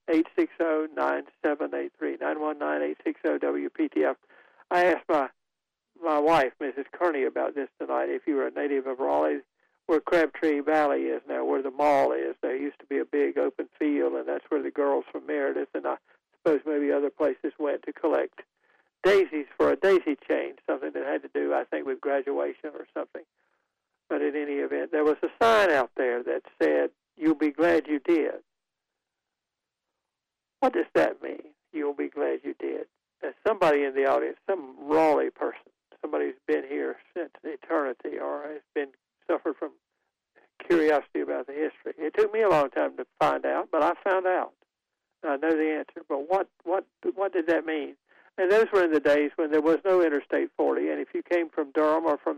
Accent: American